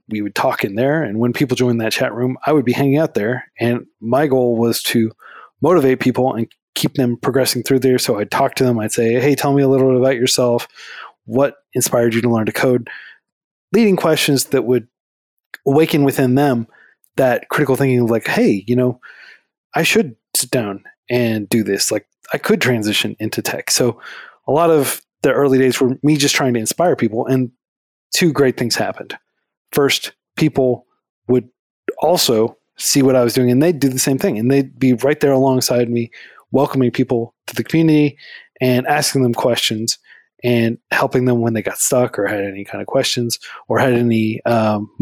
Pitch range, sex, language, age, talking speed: 115-135 Hz, male, English, 20-39, 195 wpm